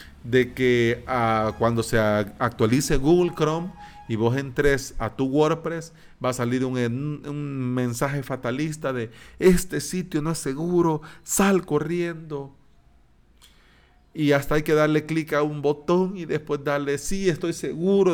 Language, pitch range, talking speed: Spanish, 110-145 Hz, 145 wpm